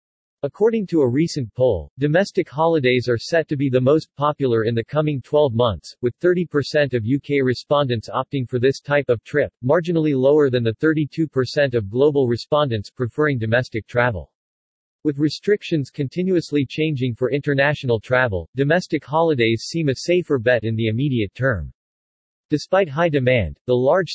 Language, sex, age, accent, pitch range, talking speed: English, male, 40-59, American, 120-150 Hz, 155 wpm